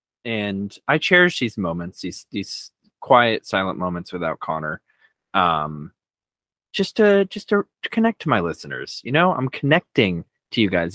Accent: American